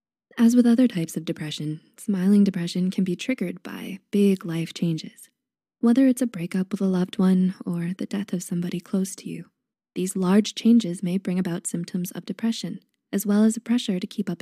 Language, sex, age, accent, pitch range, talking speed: English, female, 20-39, American, 185-230 Hz, 200 wpm